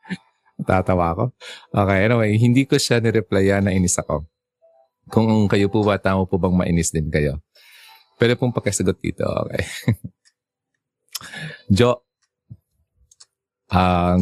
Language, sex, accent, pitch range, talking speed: Filipino, male, native, 90-110 Hz, 120 wpm